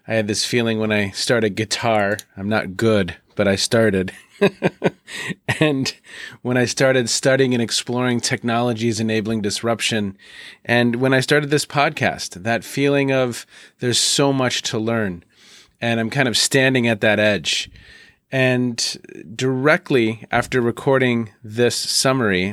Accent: American